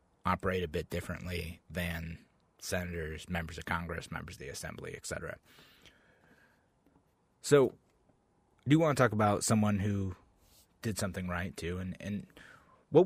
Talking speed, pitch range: 140 wpm, 85-105 Hz